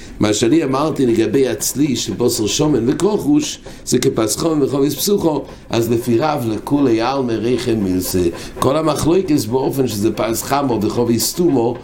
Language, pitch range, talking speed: English, 110-140 Hz, 140 wpm